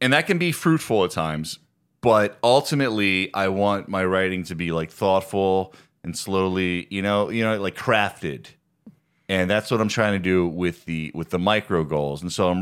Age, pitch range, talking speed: 30-49, 90-115 Hz, 195 wpm